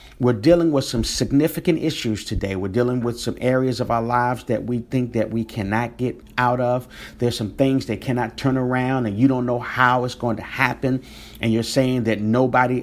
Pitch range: 110-135 Hz